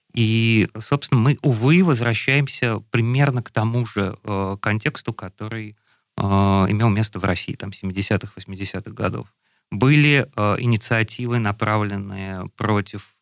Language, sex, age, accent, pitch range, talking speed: Russian, male, 30-49, native, 105-125 Hz, 120 wpm